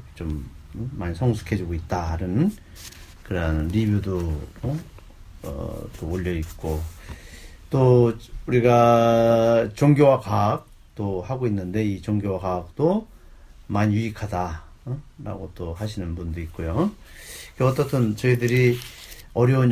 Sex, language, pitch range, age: male, Korean, 85-115 Hz, 40-59